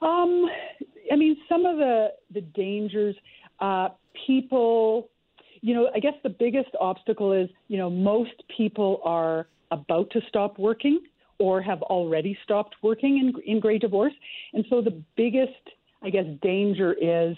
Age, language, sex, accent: 50-69, English, female, American